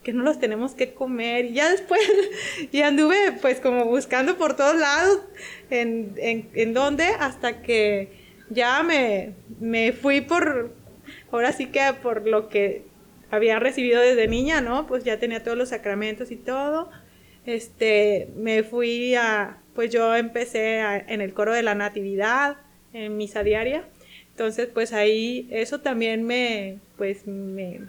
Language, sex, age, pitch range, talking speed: Spanish, female, 30-49, 215-265 Hz, 155 wpm